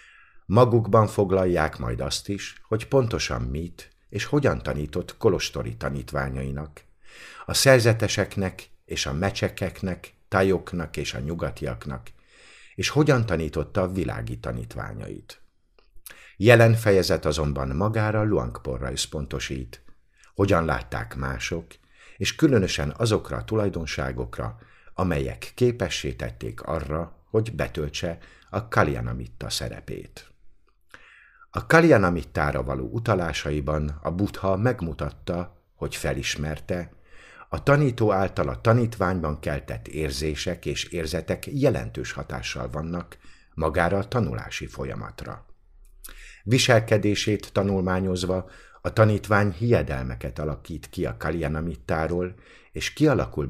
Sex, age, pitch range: male, 50-69, 75-105 Hz